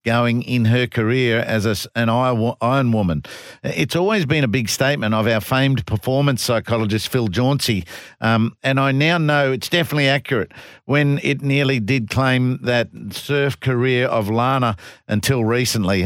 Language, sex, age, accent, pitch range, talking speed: English, male, 50-69, Australian, 120-150 Hz, 155 wpm